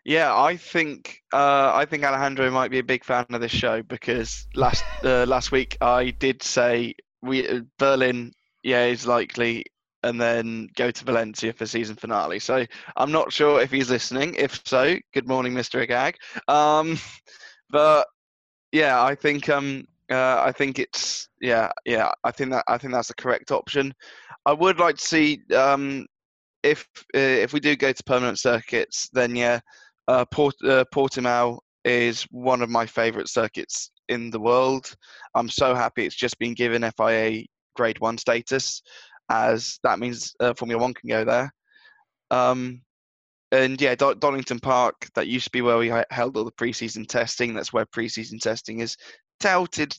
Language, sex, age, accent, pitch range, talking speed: English, male, 10-29, British, 120-140 Hz, 175 wpm